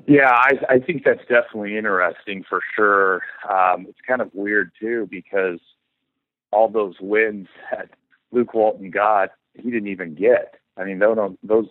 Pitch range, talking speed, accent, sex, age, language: 90-115 Hz, 160 wpm, American, male, 40-59, English